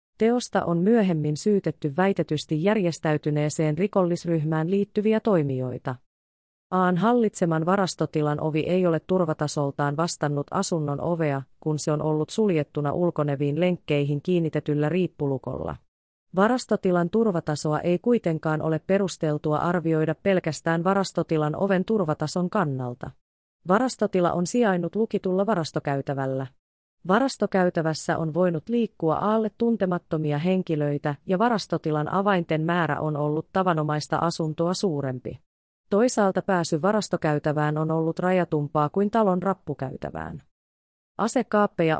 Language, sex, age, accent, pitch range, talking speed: Finnish, female, 30-49, native, 150-190 Hz, 100 wpm